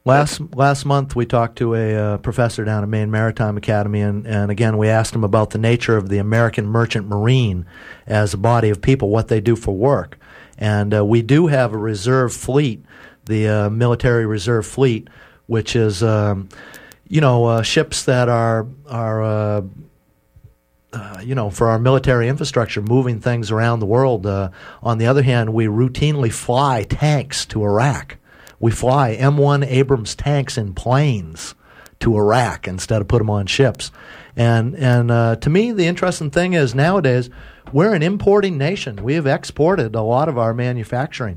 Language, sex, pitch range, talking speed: English, male, 110-135 Hz, 175 wpm